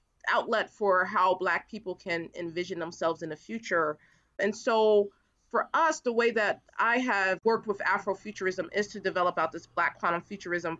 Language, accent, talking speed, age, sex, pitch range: English, American, 170 wpm, 30-49, female, 165-205 Hz